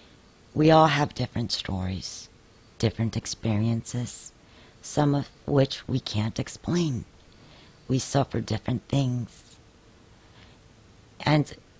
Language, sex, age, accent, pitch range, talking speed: English, female, 50-69, American, 105-135 Hz, 90 wpm